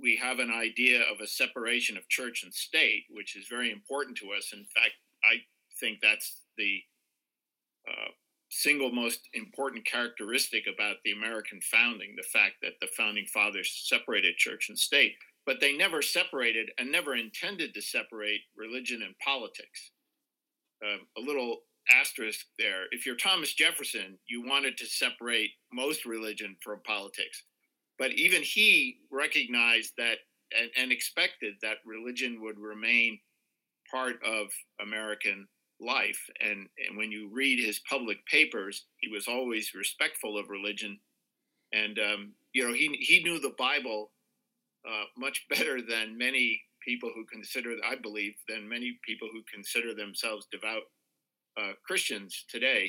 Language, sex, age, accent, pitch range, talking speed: English, male, 50-69, American, 105-125 Hz, 145 wpm